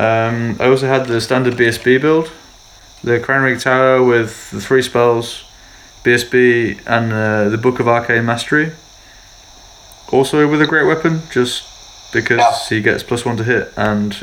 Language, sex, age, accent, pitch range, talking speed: English, male, 20-39, British, 115-140 Hz, 155 wpm